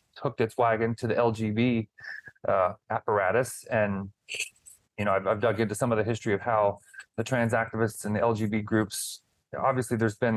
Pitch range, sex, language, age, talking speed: 110-130 Hz, male, English, 30-49, 180 wpm